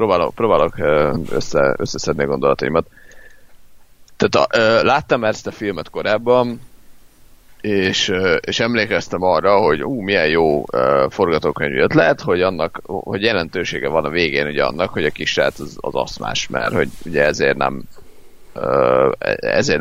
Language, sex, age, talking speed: Hungarian, male, 30-49, 130 wpm